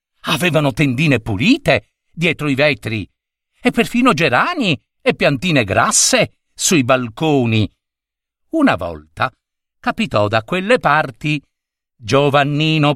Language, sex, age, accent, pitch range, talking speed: Italian, male, 50-69, native, 130-215 Hz, 95 wpm